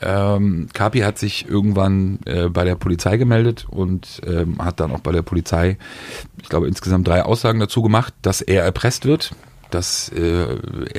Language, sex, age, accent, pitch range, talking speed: German, male, 40-59, German, 90-115 Hz, 170 wpm